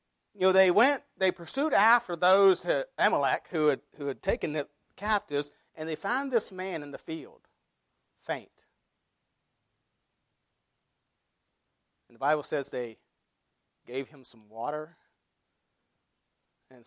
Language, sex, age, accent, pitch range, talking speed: English, male, 40-59, American, 145-215 Hz, 125 wpm